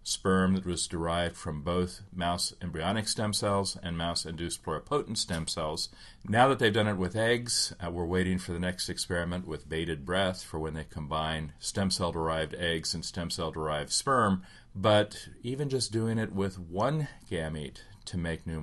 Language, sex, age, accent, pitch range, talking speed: English, male, 40-59, American, 80-100 Hz, 175 wpm